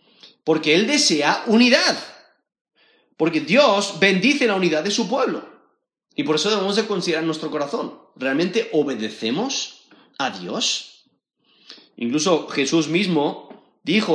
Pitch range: 155-245 Hz